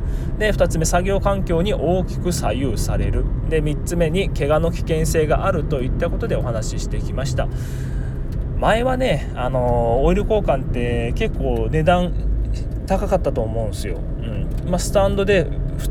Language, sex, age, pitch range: Japanese, male, 20-39, 115-155 Hz